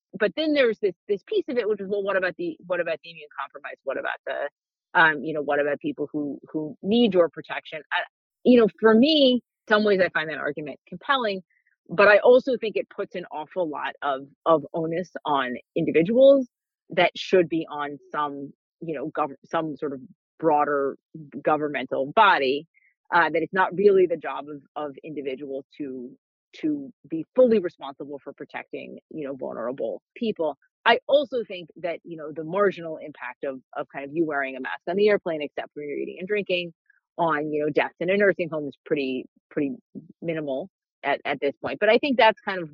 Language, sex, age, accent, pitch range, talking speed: English, female, 30-49, American, 150-205 Hz, 200 wpm